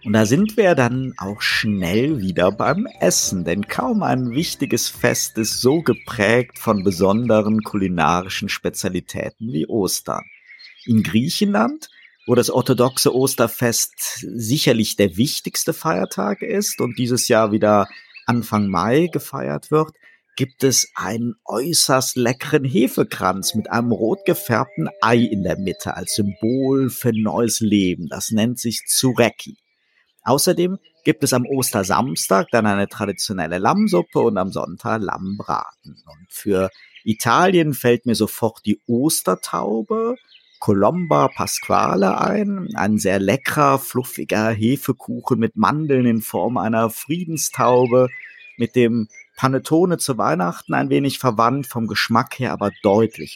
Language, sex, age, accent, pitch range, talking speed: German, male, 50-69, German, 105-135 Hz, 130 wpm